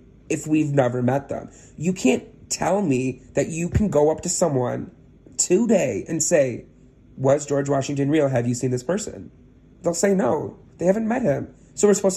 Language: English